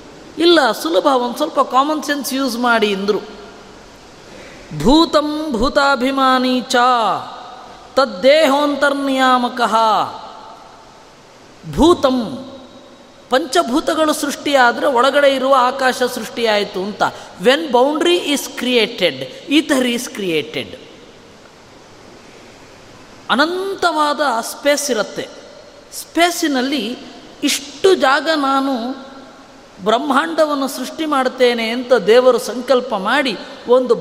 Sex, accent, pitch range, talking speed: female, native, 245-295 Hz, 75 wpm